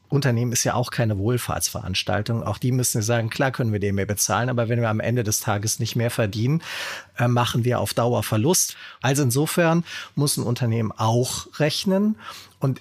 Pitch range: 105-140 Hz